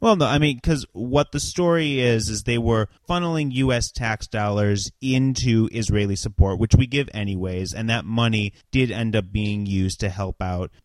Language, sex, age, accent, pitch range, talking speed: English, male, 30-49, American, 100-125 Hz, 190 wpm